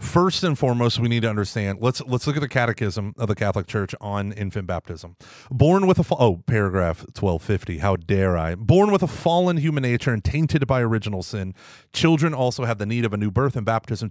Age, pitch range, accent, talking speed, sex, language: 30-49, 105-145 Hz, American, 215 wpm, male, English